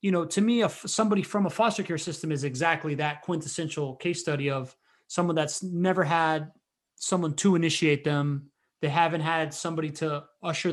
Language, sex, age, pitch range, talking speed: English, male, 30-49, 155-190 Hz, 180 wpm